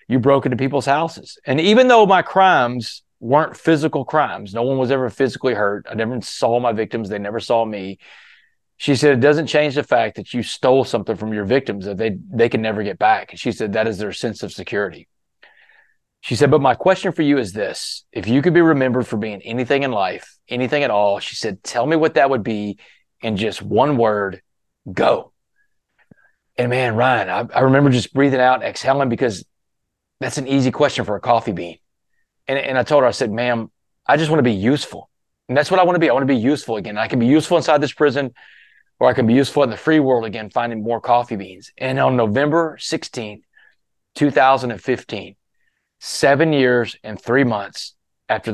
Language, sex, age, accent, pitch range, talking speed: English, male, 30-49, American, 115-150 Hz, 210 wpm